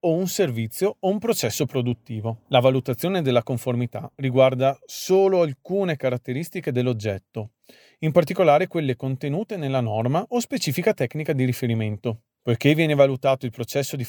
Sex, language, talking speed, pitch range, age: male, Italian, 140 wpm, 120-155 Hz, 40-59